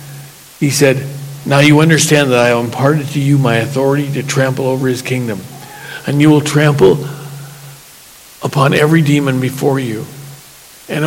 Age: 50-69